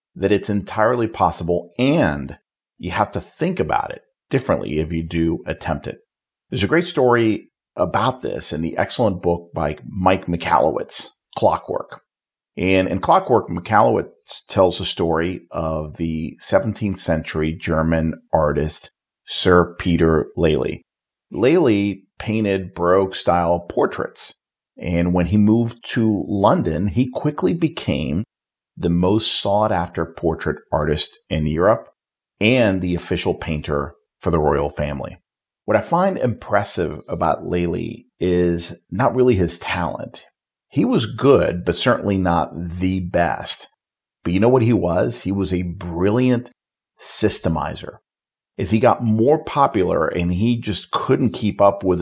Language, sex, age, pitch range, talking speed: English, male, 40-59, 85-105 Hz, 135 wpm